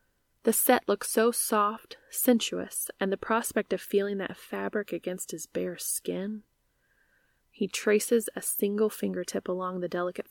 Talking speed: 145 wpm